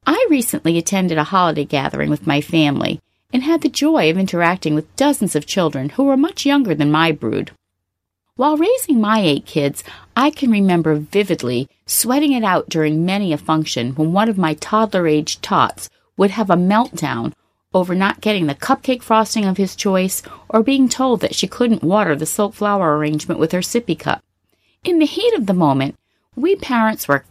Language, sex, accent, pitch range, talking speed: English, female, American, 155-245 Hz, 185 wpm